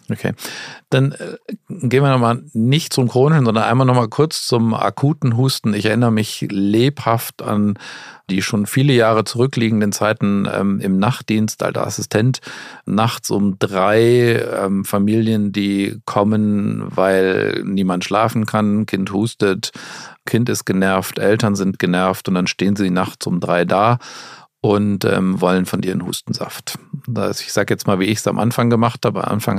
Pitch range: 100-120 Hz